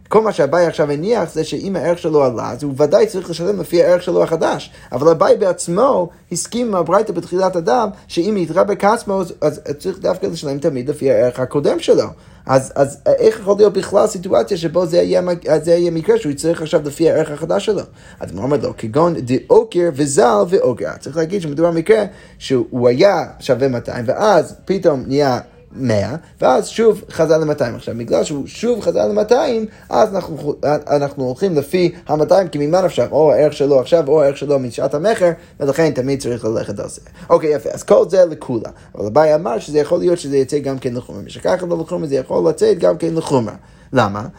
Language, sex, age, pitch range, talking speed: Hebrew, male, 30-49, 140-185 Hz, 185 wpm